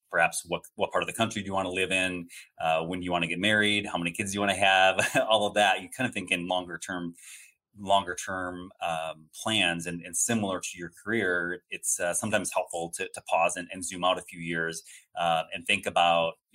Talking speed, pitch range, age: 245 wpm, 85-95 Hz, 30-49